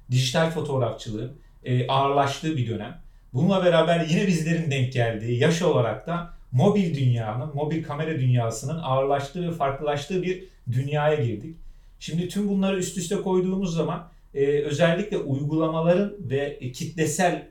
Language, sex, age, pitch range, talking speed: Turkish, male, 40-59, 135-175 Hz, 125 wpm